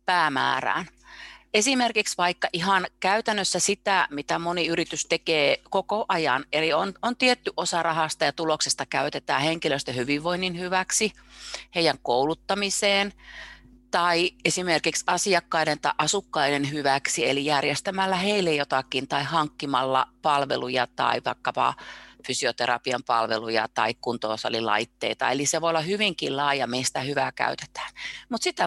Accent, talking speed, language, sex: native, 115 wpm, Finnish, female